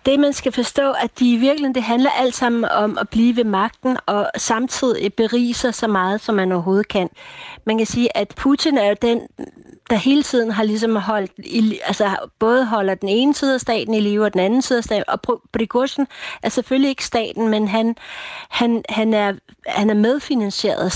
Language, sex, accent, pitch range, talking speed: Danish, female, native, 200-240 Hz, 205 wpm